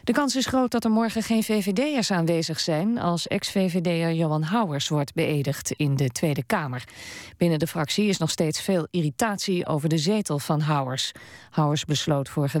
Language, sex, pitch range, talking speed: Dutch, female, 145-185 Hz, 175 wpm